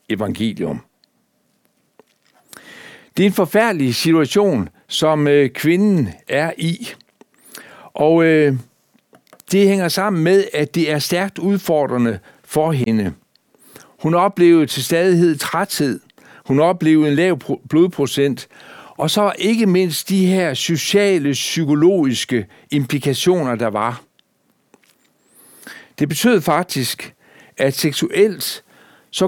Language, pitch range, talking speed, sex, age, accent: Danish, 140-180 Hz, 100 wpm, male, 60-79, native